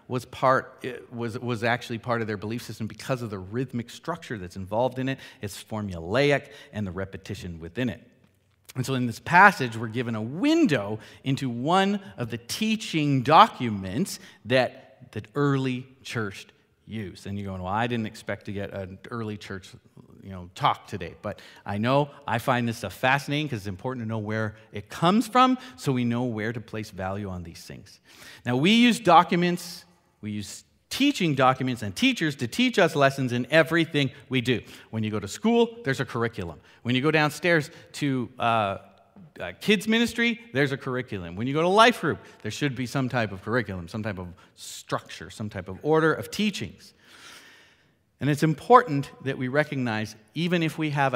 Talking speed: 190 wpm